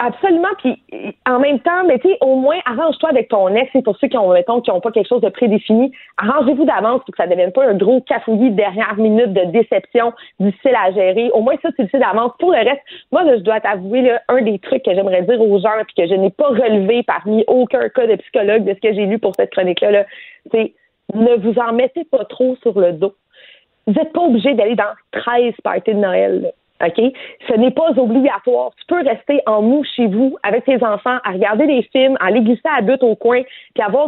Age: 30-49